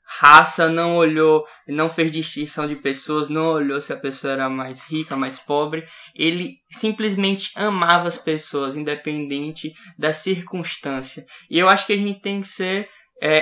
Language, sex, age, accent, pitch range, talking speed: Portuguese, male, 10-29, Brazilian, 145-175 Hz, 160 wpm